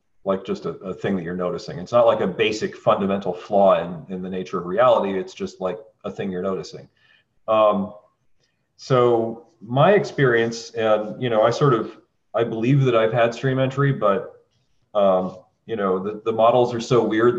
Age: 40-59